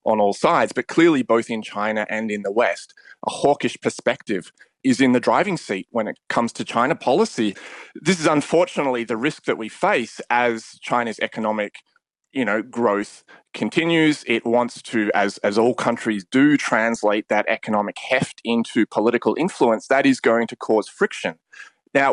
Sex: male